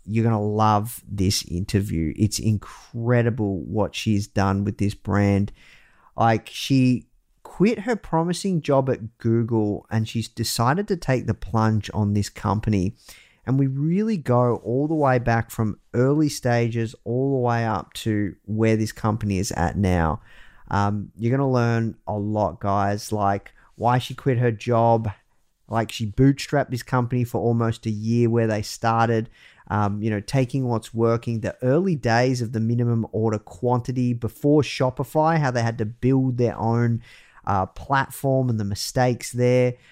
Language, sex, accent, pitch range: English, male, Australian, 105-130 Hz